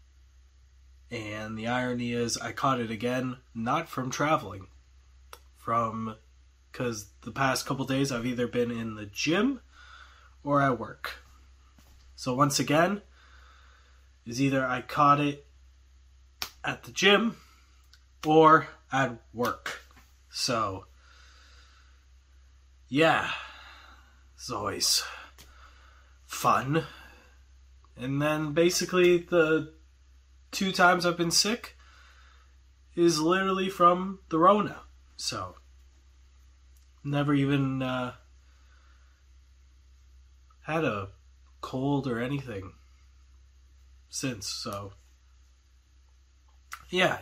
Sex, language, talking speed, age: male, English, 90 wpm, 20-39